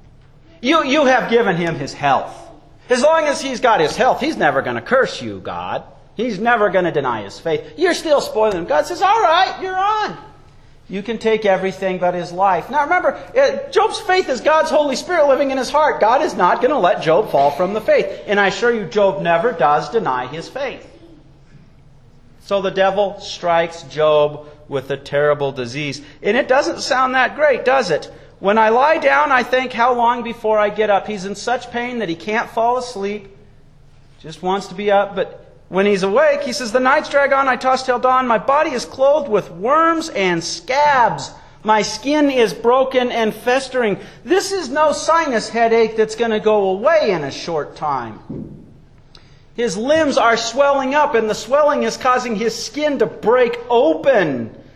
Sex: male